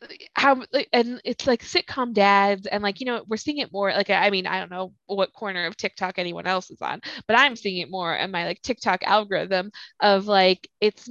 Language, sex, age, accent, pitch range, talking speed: English, female, 20-39, American, 190-245 Hz, 220 wpm